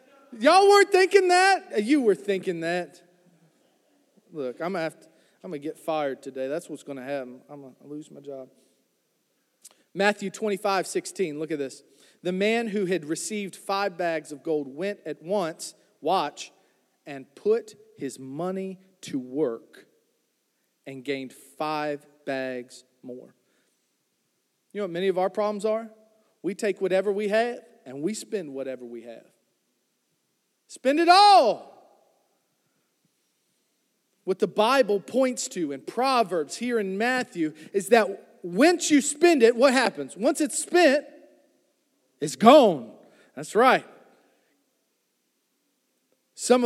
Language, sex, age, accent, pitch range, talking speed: English, male, 40-59, American, 155-235 Hz, 135 wpm